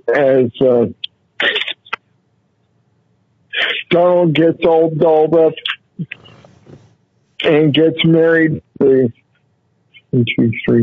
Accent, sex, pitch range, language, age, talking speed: American, male, 140-180 Hz, English, 60-79, 60 wpm